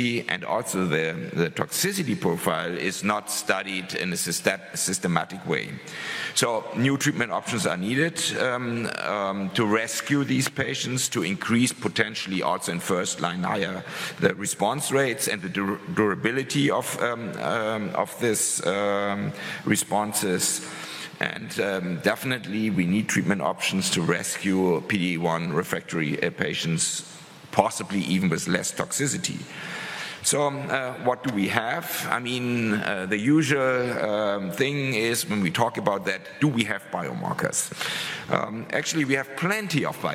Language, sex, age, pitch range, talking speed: English, male, 50-69, 100-130 Hz, 135 wpm